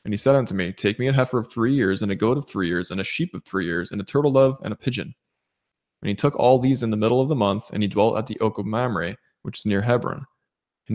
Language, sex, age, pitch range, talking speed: English, male, 20-39, 100-120 Hz, 300 wpm